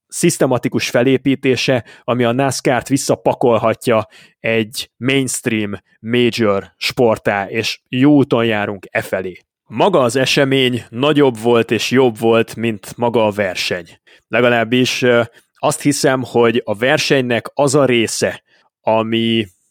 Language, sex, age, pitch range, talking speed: Hungarian, male, 20-39, 110-130 Hz, 115 wpm